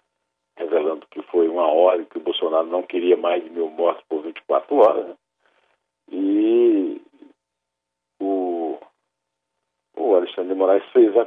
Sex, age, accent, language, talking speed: male, 50-69, Brazilian, Portuguese, 130 wpm